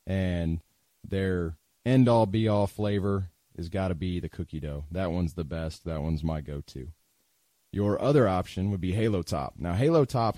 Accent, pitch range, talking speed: American, 85-115 Hz, 175 wpm